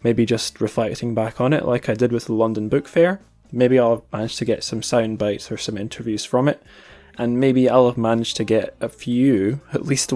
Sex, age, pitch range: male, 10-29, 105-125 Hz